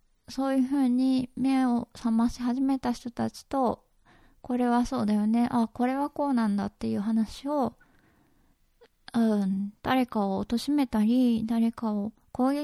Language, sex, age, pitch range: Japanese, female, 20-39, 210-260 Hz